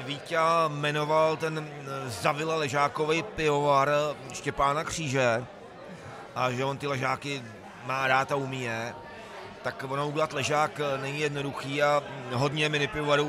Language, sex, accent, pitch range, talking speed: Czech, male, native, 130-150 Hz, 120 wpm